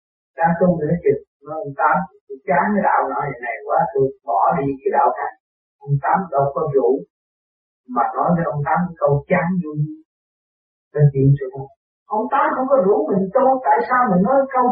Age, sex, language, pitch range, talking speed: 50-69, male, Vietnamese, 155-250 Hz, 195 wpm